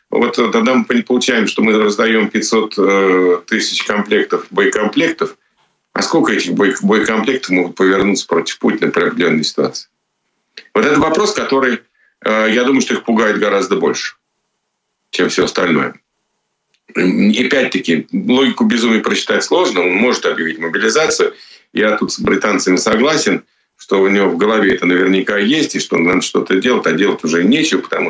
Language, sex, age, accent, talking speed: Ukrainian, male, 50-69, native, 145 wpm